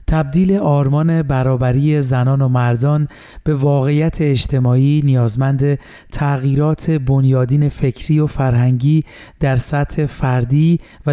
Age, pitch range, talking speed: 30-49, 135-155 Hz, 100 wpm